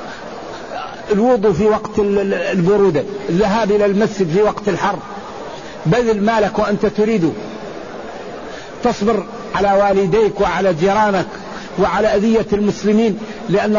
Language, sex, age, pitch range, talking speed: Arabic, male, 50-69, 200-225 Hz, 100 wpm